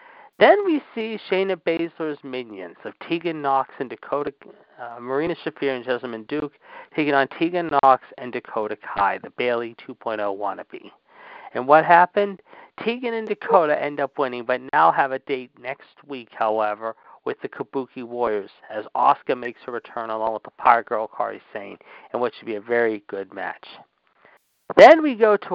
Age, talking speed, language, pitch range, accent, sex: 50-69, 170 wpm, English, 125-195 Hz, American, male